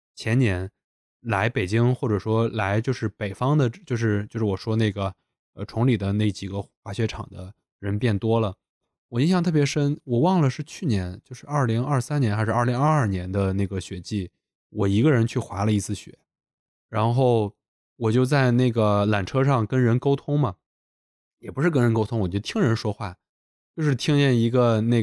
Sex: male